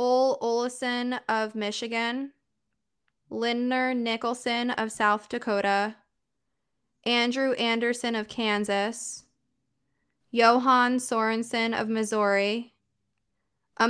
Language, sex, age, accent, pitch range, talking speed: English, female, 20-39, American, 210-245 Hz, 80 wpm